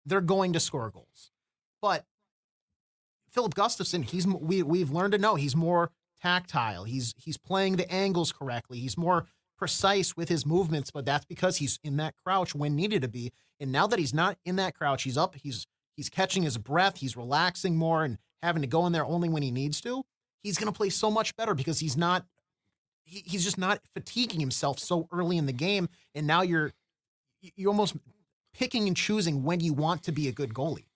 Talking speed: 200 wpm